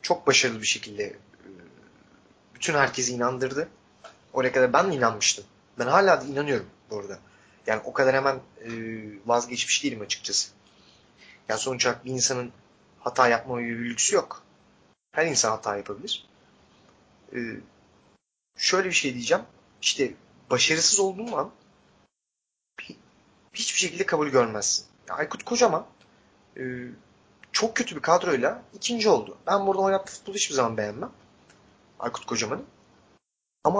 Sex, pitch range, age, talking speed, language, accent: male, 120-160 Hz, 30-49, 125 wpm, Turkish, native